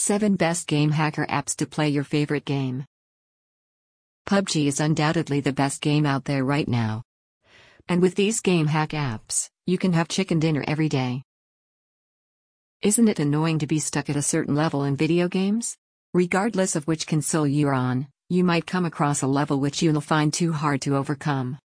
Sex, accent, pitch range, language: female, American, 140-165 Hz, English